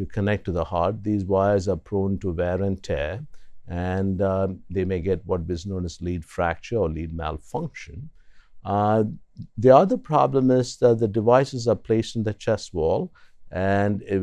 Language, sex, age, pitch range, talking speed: English, male, 60-79, 90-115 Hz, 175 wpm